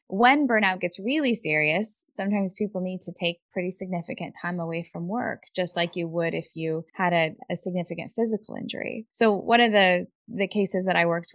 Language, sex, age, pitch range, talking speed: English, female, 20-39, 170-215 Hz, 195 wpm